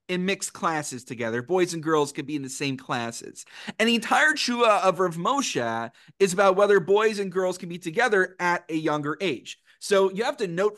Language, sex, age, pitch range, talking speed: English, male, 30-49, 150-195 Hz, 210 wpm